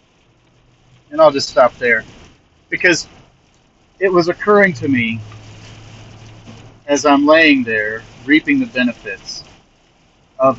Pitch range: 110-160 Hz